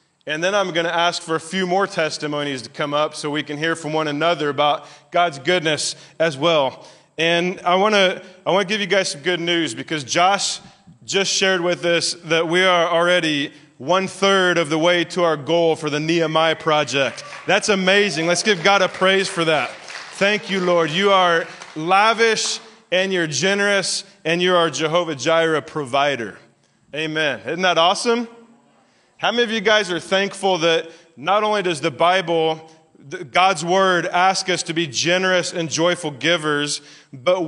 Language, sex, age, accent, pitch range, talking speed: English, male, 20-39, American, 160-190 Hz, 180 wpm